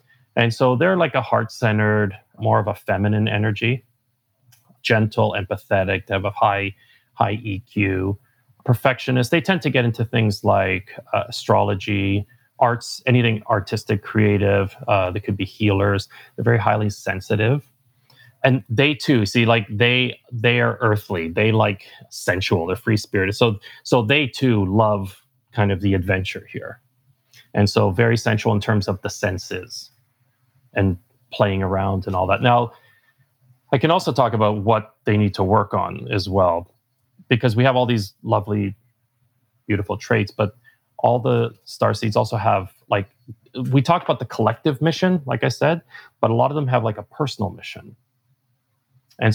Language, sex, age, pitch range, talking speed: English, male, 30-49, 105-125 Hz, 160 wpm